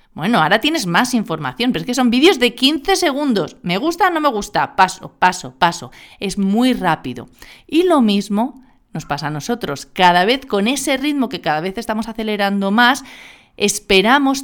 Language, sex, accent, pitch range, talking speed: Spanish, female, Spanish, 165-235 Hz, 185 wpm